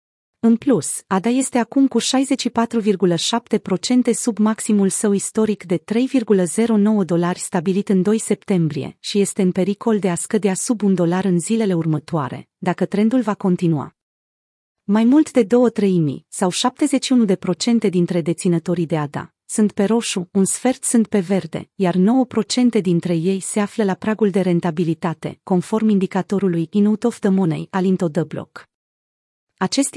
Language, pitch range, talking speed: Romanian, 180-225 Hz, 145 wpm